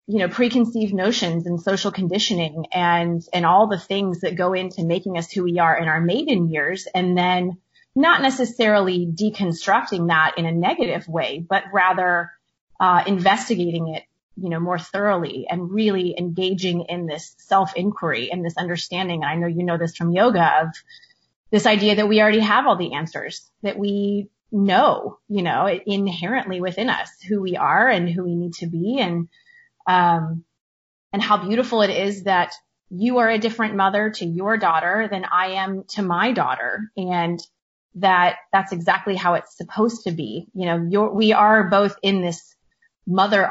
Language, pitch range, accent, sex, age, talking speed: English, 175-210 Hz, American, female, 30-49, 175 wpm